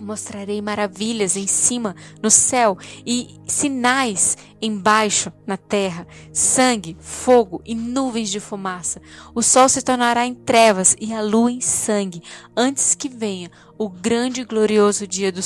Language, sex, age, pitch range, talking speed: Portuguese, female, 10-29, 205-265 Hz, 145 wpm